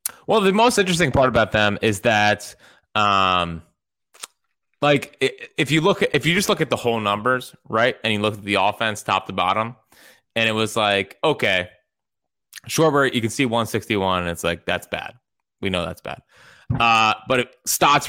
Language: English